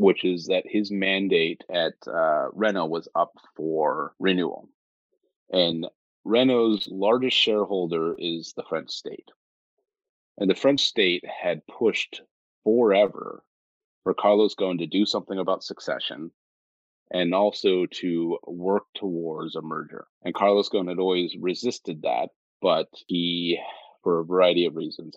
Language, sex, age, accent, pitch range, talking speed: English, male, 30-49, American, 85-100 Hz, 135 wpm